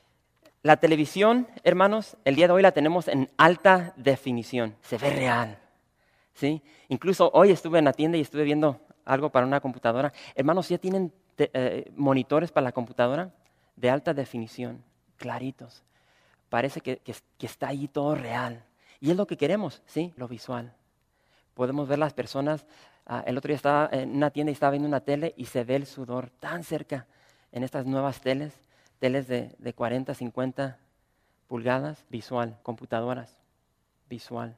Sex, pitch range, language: male, 125-145 Hz, English